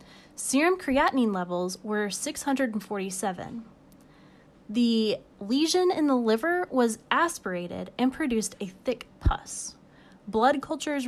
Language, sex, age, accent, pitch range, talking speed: English, female, 20-39, American, 200-275 Hz, 105 wpm